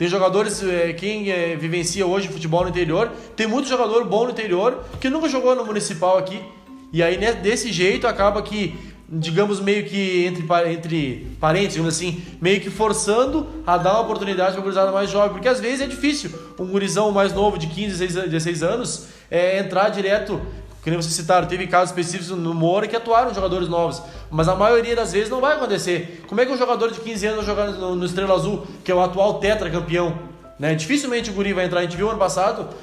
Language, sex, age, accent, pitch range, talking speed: Portuguese, male, 20-39, Brazilian, 175-210 Hz, 205 wpm